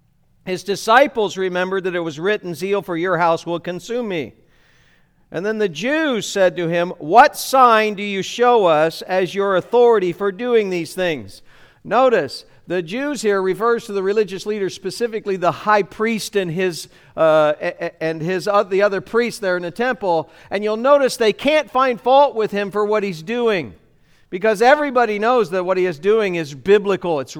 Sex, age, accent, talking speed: male, 50-69, American, 185 wpm